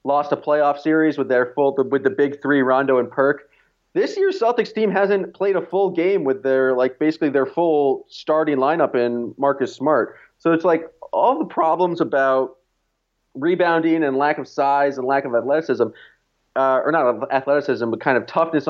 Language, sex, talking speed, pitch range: English, male, 185 wpm, 130-160 Hz